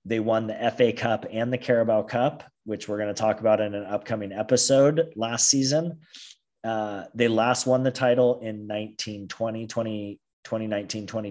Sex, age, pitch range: male, 30-49, 100-120 Hz